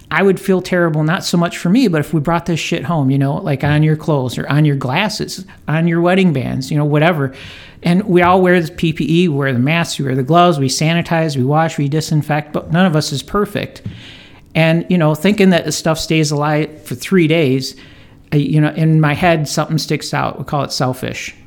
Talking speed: 225 wpm